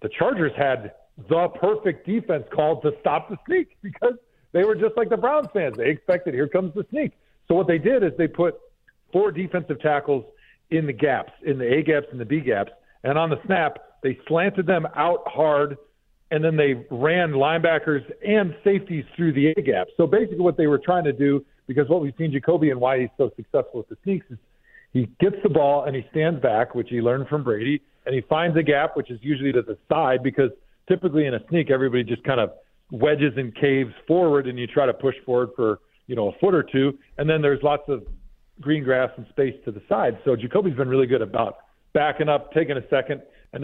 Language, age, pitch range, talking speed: English, 50-69, 135-170 Hz, 225 wpm